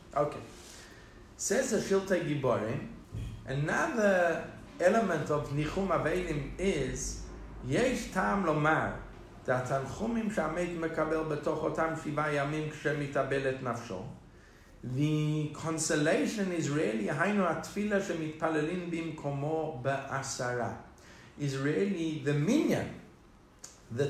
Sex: male